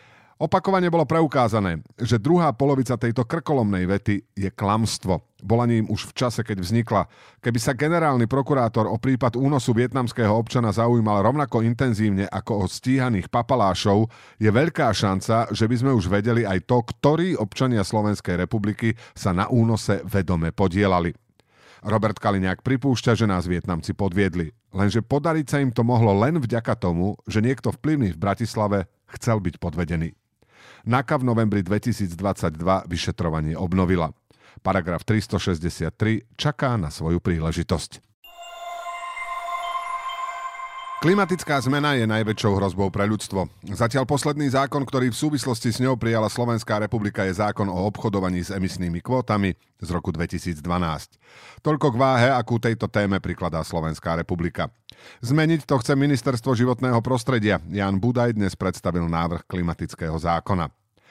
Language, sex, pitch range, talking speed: Slovak, male, 95-130 Hz, 135 wpm